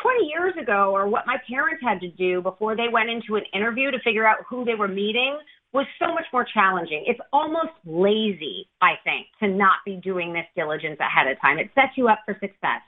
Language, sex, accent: English, female, American